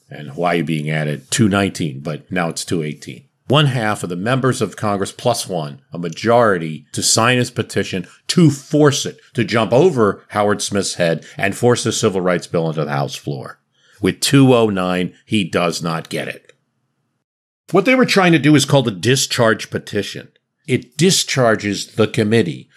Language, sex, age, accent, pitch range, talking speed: English, male, 50-69, American, 95-135 Hz, 170 wpm